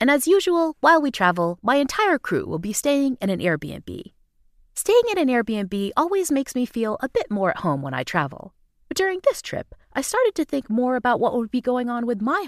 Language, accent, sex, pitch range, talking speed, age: English, American, female, 195-320 Hz, 230 wpm, 30-49